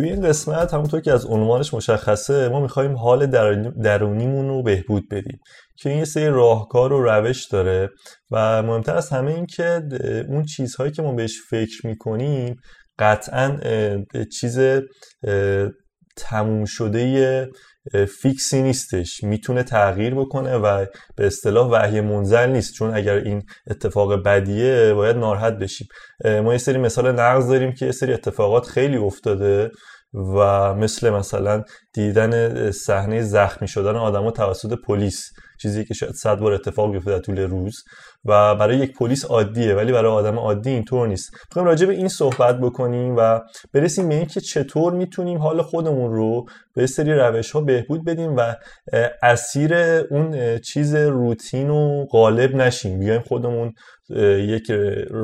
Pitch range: 105-135 Hz